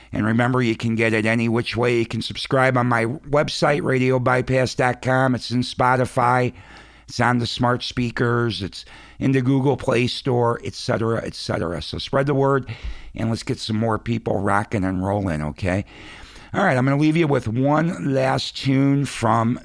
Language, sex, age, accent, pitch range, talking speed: English, male, 60-79, American, 105-130 Hz, 180 wpm